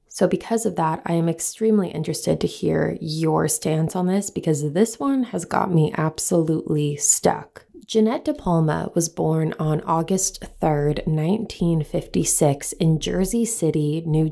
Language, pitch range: English, 155-190 Hz